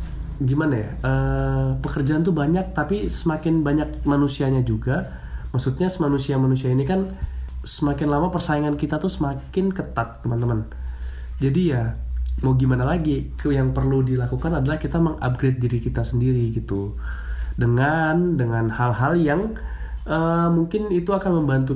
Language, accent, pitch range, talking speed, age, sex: Indonesian, native, 115-155 Hz, 130 wpm, 20-39, male